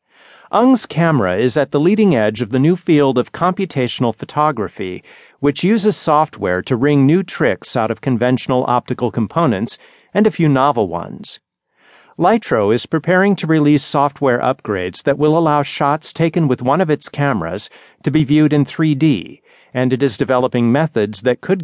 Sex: male